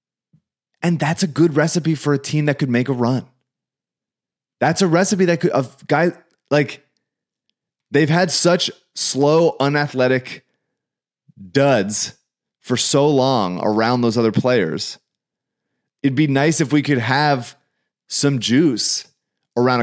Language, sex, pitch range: English, male, 105-140 Hz